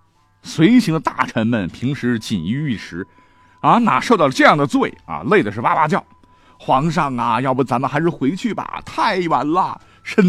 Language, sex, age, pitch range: Chinese, male, 50-69, 100-160 Hz